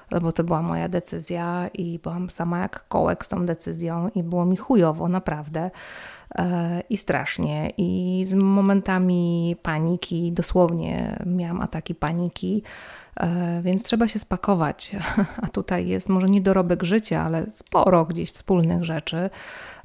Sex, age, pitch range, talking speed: female, 30-49, 165-190 Hz, 135 wpm